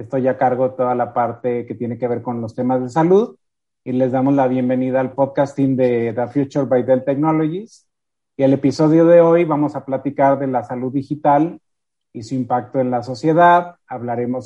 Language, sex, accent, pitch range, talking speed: Spanish, male, Mexican, 125-135 Hz, 200 wpm